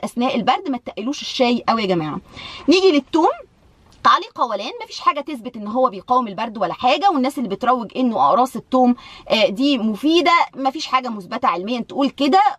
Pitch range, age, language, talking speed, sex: 240-285 Hz, 20-39, Arabic, 165 wpm, female